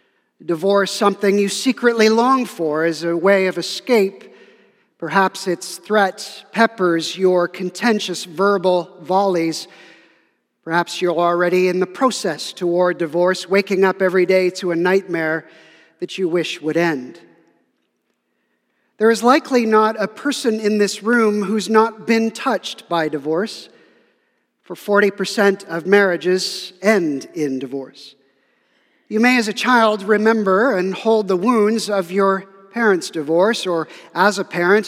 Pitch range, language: 175-205 Hz, English